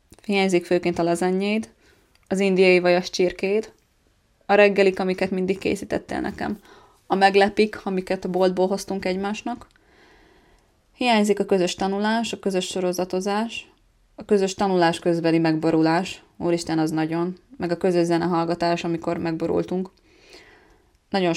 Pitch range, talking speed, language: 170-200 Hz, 120 wpm, Hungarian